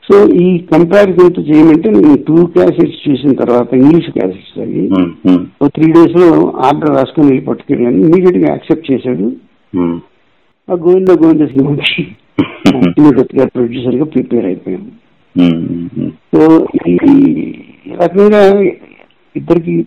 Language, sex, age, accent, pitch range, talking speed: Telugu, male, 60-79, native, 120-160 Hz, 105 wpm